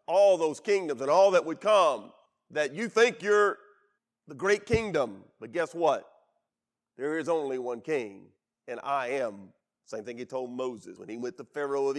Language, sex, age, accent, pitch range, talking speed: English, male, 40-59, American, 130-215 Hz, 185 wpm